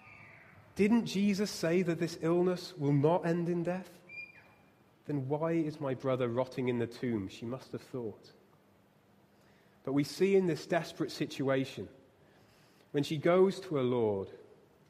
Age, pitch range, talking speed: 30-49, 130-175 Hz, 150 wpm